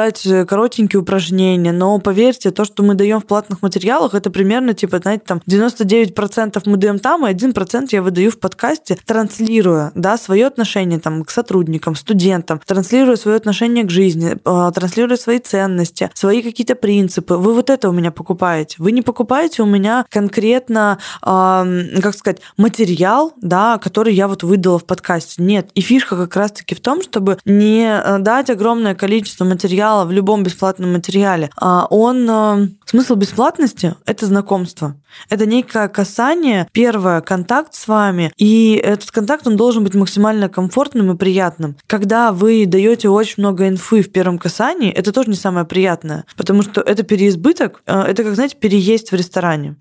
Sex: female